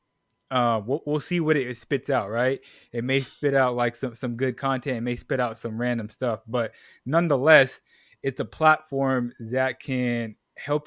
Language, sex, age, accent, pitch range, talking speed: English, male, 20-39, American, 120-135 Hz, 180 wpm